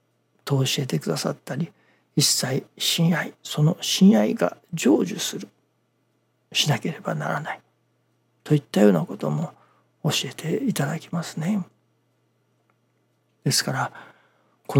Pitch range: 135-175 Hz